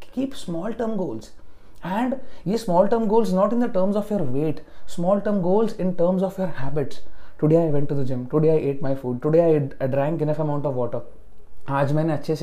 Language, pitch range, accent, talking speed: English, 145-190 Hz, Indian, 190 wpm